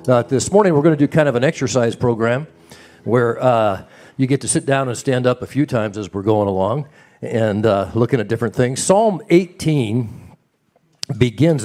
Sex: male